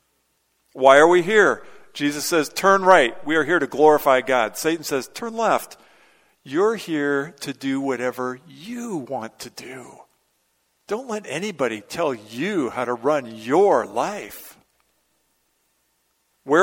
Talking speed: 135 wpm